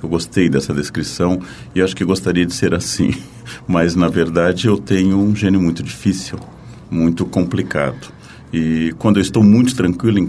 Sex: male